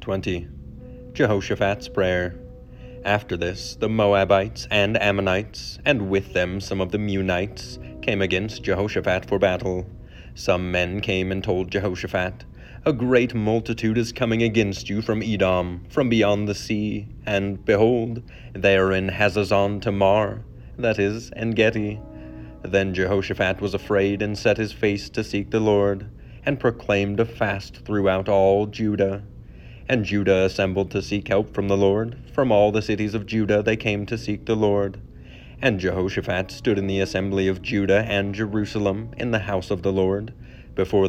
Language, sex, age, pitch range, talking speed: English, male, 30-49, 95-110 Hz, 155 wpm